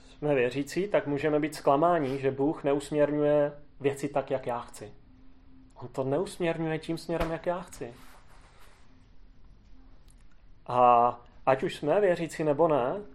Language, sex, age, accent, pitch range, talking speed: Czech, male, 30-49, native, 130-160 Hz, 130 wpm